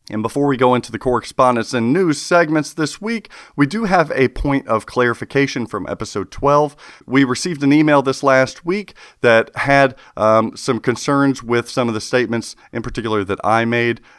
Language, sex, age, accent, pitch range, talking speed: English, male, 40-59, American, 100-130 Hz, 185 wpm